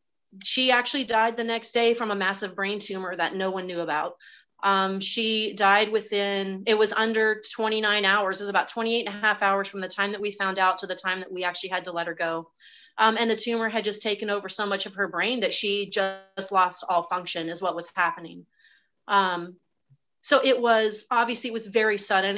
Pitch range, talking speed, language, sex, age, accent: 190-230 Hz, 225 wpm, English, female, 30-49, American